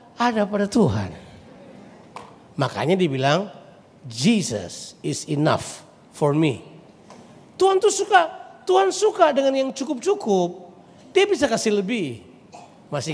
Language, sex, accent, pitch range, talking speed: Indonesian, male, native, 170-285 Hz, 105 wpm